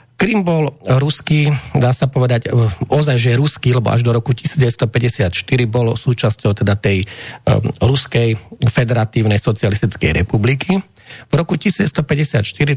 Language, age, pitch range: Slovak, 40-59, 115-145 Hz